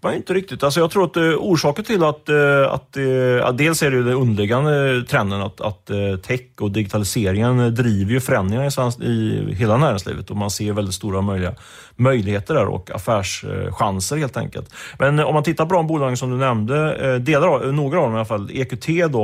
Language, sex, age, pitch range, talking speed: Swedish, male, 30-49, 105-130 Hz, 195 wpm